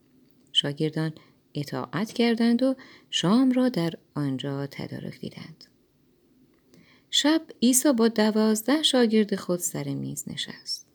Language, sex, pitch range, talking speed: Persian, female, 150-210 Hz, 105 wpm